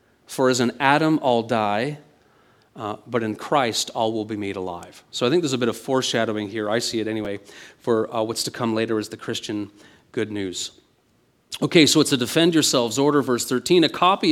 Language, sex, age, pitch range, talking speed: English, male, 40-59, 125-175 Hz, 210 wpm